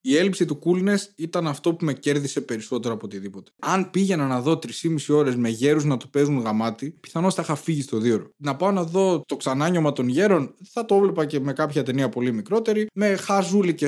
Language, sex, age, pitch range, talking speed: Greek, male, 20-39, 125-180 Hz, 210 wpm